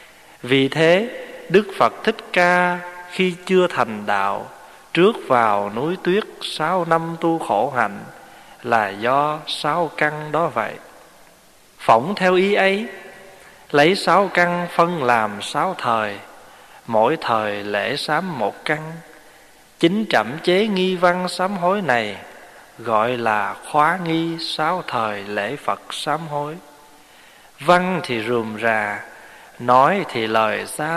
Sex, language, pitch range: male, Vietnamese, 115-175 Hz